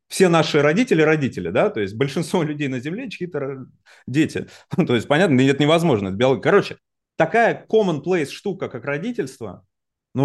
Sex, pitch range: male, 115-155 Hz